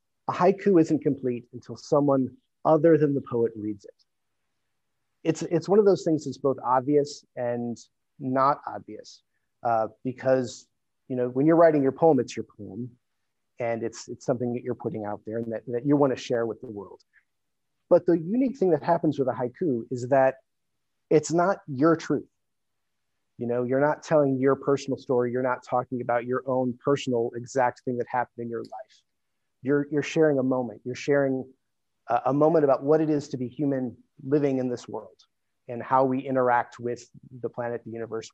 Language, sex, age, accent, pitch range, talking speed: English, male, 30-49, American, 120-150 Hz, 190 wpm